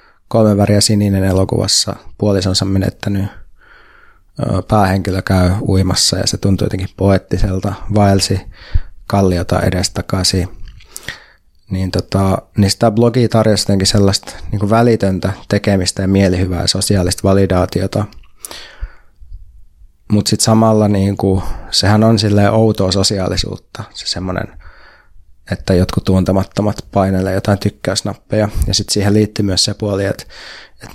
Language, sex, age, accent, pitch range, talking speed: Finnish, male, 20-39, native, 95-105 Hz, 105 wpm